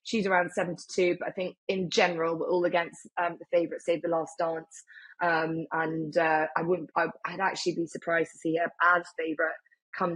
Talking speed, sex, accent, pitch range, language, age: 190 wpm, female, British, 170-195 Hz, English, 20-39